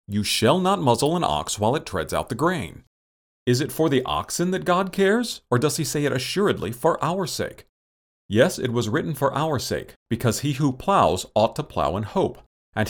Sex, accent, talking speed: male, American, 215 wpm